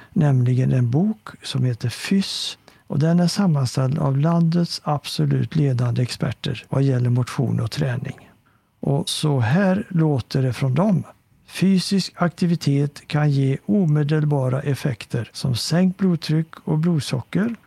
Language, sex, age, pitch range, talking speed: Swedish, male, 60-79, 125-160 Hz, 130 wpm